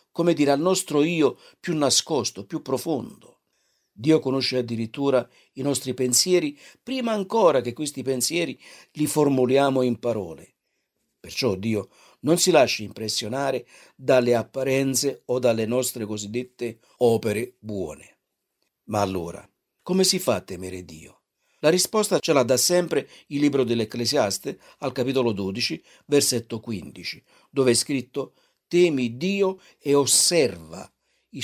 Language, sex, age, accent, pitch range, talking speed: Italian, male, 50-69, native, 110-145 Hz, 130 wpm